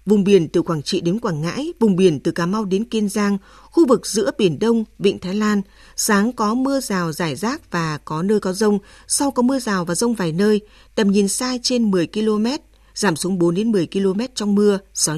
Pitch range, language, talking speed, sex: 185-230 Hz, Vietnamese, 230 wpm, female